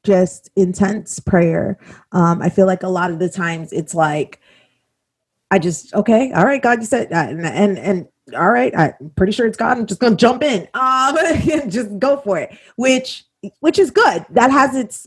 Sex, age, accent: female, 30-49, American